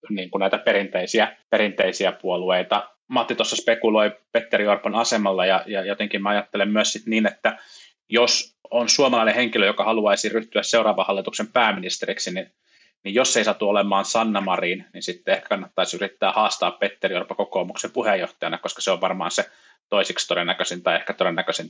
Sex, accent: male, native